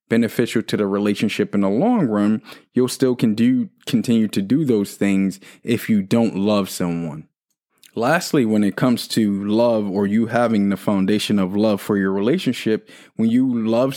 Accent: American